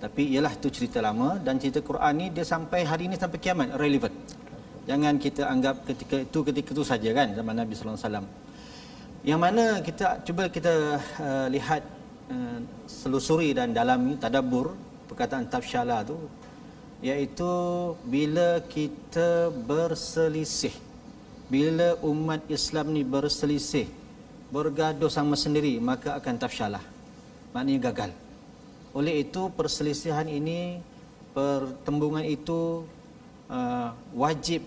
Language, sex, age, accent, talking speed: Malayalam, male, 40-59, Indonesian, 120 wpm